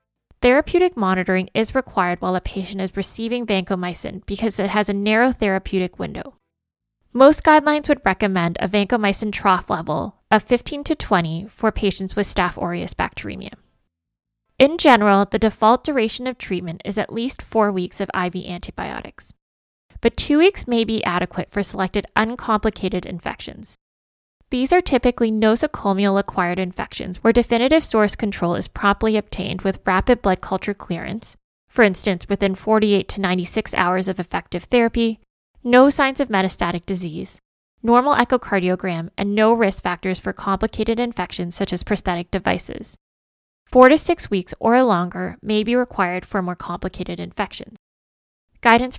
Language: English